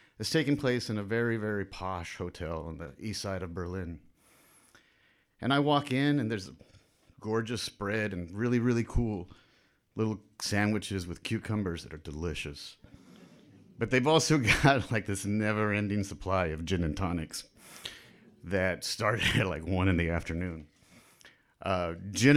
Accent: American